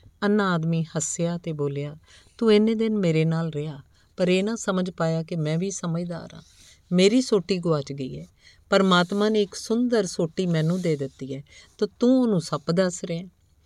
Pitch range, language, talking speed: 150-190 Hz, Punjabi, 180 wpm